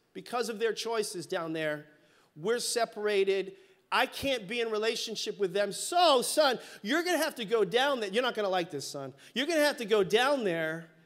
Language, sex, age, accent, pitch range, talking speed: English, male, 30-49, American, 205-265 Hz, 215 wpm